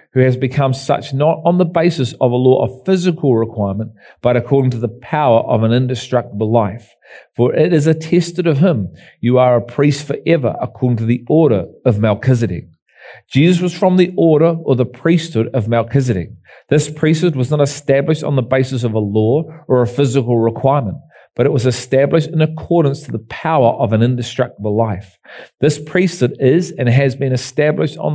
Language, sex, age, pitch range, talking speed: English, male, 40-59, 120-150 Hz, 185 wpm